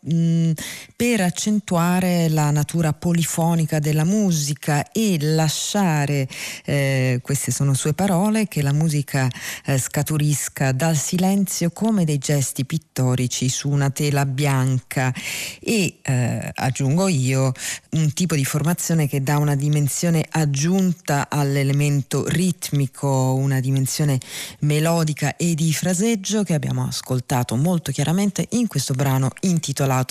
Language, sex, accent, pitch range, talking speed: Italian, female, native, 140-175 Hz, 120 wpm